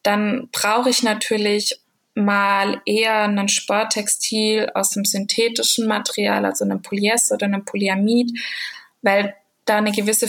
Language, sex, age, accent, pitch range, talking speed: German, female, 20-39, German, 195-225 Hz, 130 wpm